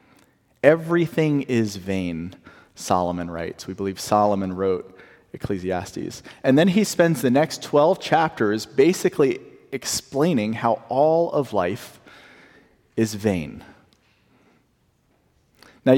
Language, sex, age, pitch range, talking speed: English, male, 40-59, 100-155 Hz, 100 wpm